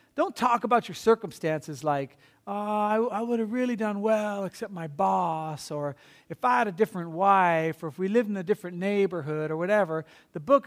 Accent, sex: American, male